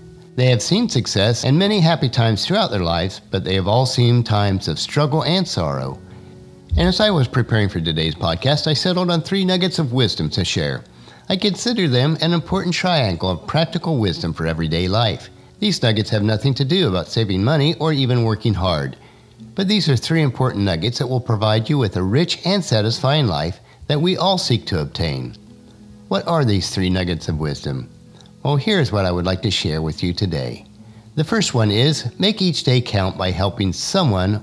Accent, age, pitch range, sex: American, 50-69, 95-155 Hz, male